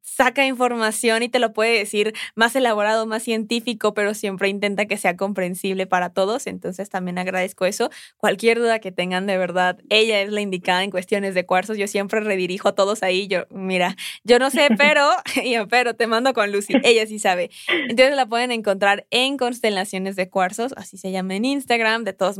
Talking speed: 195 wpm